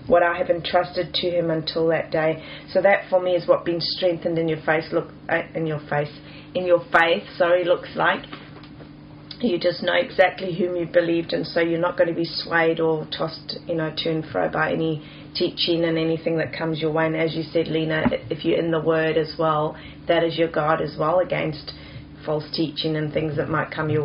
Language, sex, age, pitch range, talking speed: English, female, 30-49, 160-175 Hz, 220 wpm